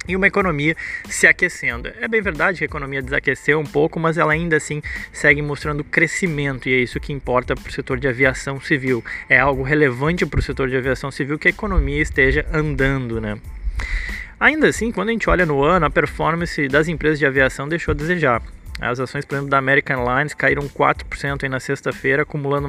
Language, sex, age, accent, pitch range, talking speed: Portuguese, male, 20-39, Brazilian, 135-165 Hz, 205 wpm